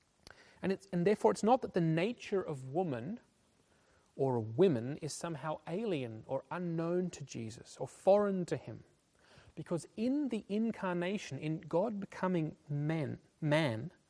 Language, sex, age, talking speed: English, male, 30-49, 135 wpm